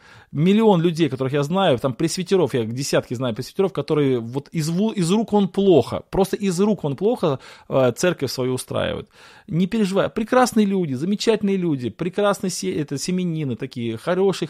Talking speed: 155 wpm